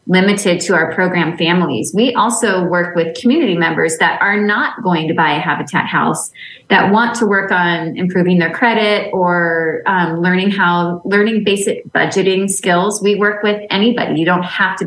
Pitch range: 170-205 Hz